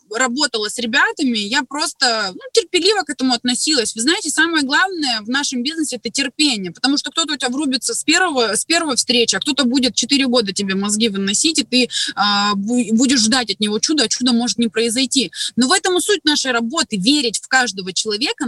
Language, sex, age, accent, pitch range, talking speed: Russian, female, 20-39, native, 210-275 Hz, 200 wpm